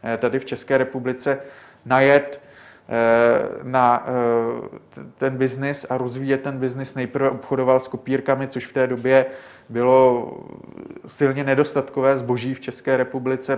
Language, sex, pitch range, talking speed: Czech, male, 125-135 Hz, 130 wpm